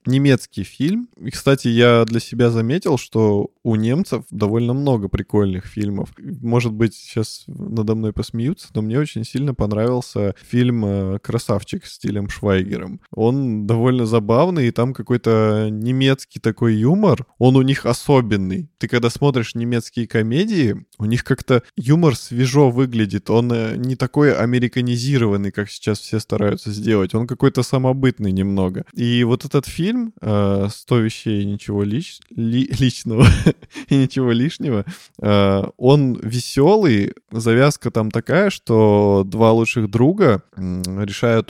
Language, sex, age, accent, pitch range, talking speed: Russian, male, 20-39, native, 105-130 Hz, 135 wpm